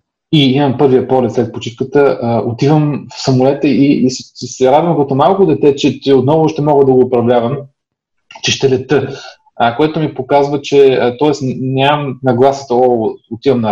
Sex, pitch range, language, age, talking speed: male, 120-145 Hz, Bulgarian, 30-49, 150 wpm